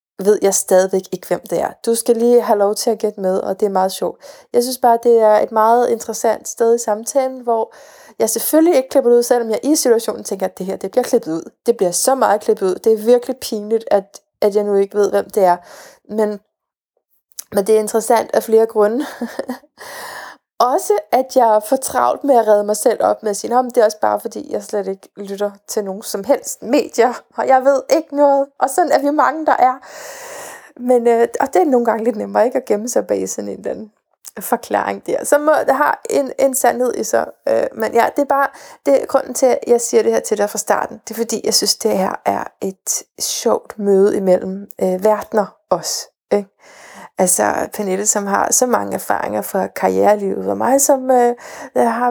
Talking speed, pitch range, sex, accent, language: 225 wpm, 205-260 Hz, female, native, Danish